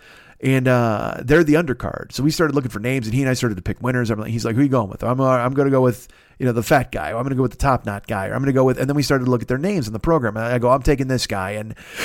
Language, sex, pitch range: English, male, 120-155 Hz